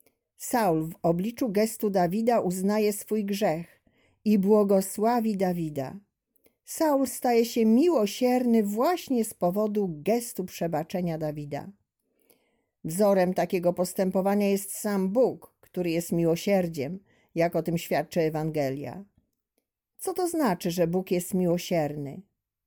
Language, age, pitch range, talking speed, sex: Polish, 40-59, 180-225 Hz, 110 wpm, female